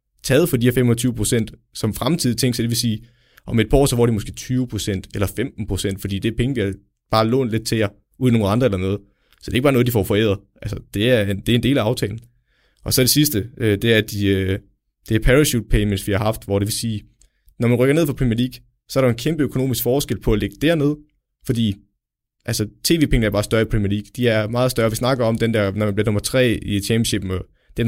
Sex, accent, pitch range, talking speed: male, native, 100-125 Hz, 260 wpm